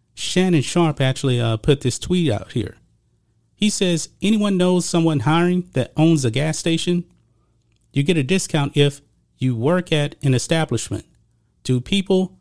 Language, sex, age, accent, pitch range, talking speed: English, male, 40-59, American, 120-165 Hz, 155 wpm